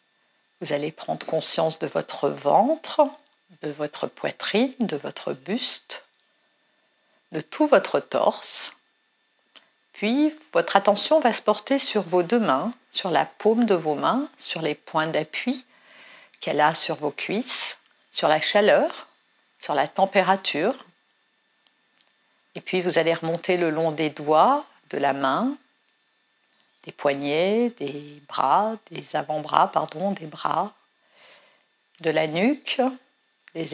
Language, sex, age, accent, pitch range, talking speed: French, female, 60-79, French, 165-255 Hz, 130 wpm